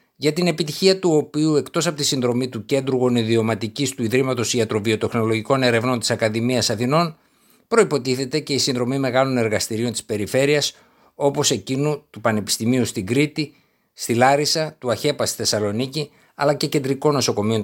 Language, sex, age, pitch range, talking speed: Greek, male, 60-79, 115-150 Hz, 145 wpm